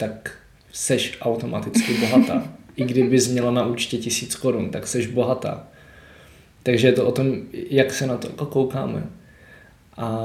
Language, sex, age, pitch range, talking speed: Czech, male, 20-39, 120-135 Hz, 145 wpm